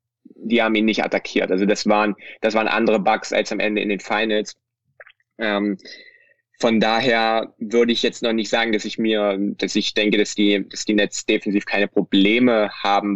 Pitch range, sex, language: 100-110 Hz, male, German